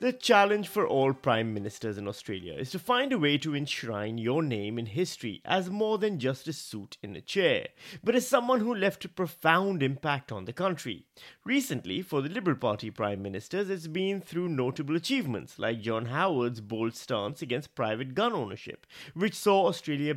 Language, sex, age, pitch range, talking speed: English, male, 30-49, 115-185 Hz, 185 wpm